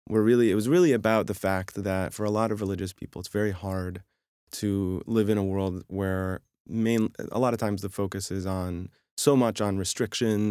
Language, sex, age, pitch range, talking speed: English, male, 20-39, 95-110 Hz, 210 wpm